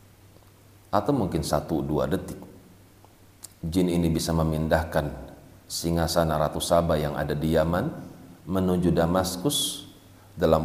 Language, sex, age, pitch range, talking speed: Indonesian, male, 40-59, 80-95 Hz, 100 wpm